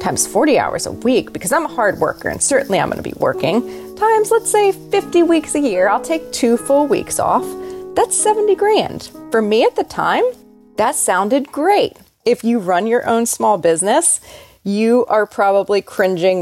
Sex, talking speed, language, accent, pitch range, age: female, 190 wpm, English, American, 185-300 Hz, 30-49